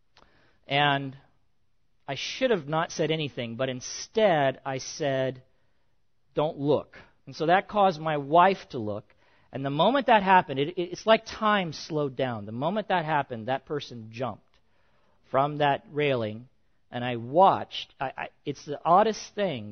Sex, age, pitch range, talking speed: male, 40-59, 115-155 Hz, 145 wpm